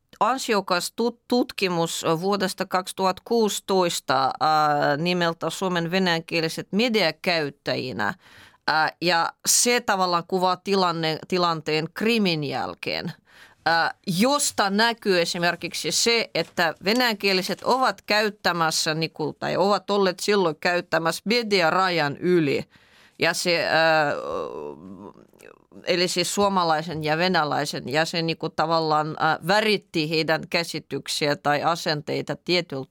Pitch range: 165-205 Hz